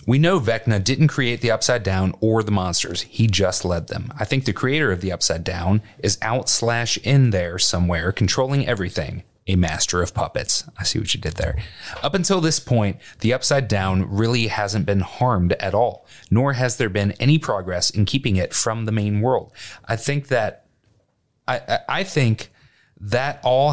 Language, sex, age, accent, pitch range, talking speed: English, male, 30-49, American, 95-125 Hz, 190 wpm